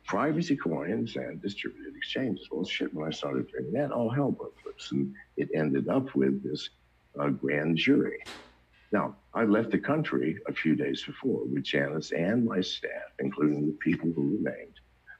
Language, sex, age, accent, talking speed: English, male, 60-79, American, 175 wpm